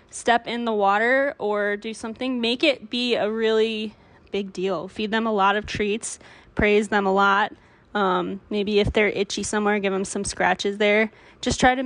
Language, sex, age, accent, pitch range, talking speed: English, female, 10-29, American, 200-225 Hz, 190 wpm